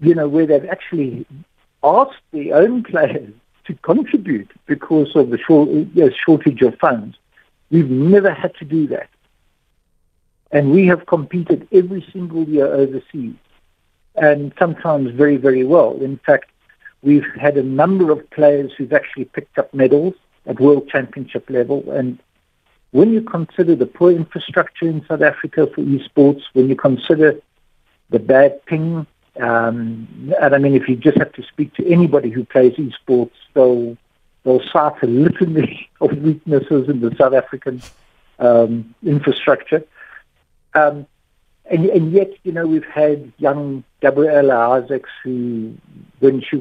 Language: English